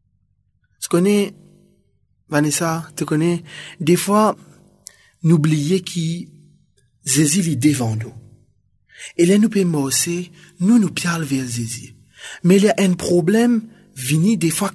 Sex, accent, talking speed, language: male, French, 135 wpm, French